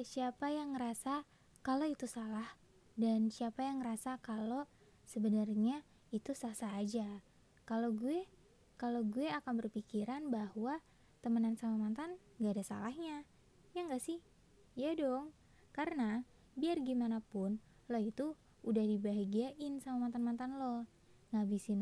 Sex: female